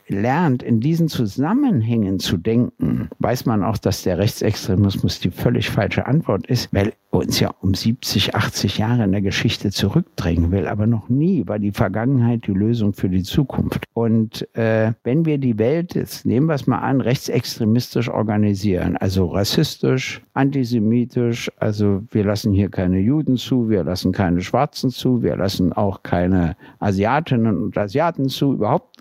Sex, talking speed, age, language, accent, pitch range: male, 165 wpm, 60-79, German, German, 100-135 Hz